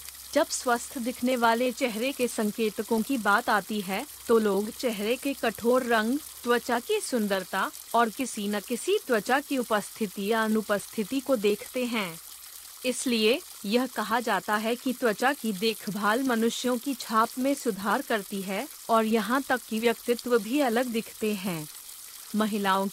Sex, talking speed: female, 150 wpm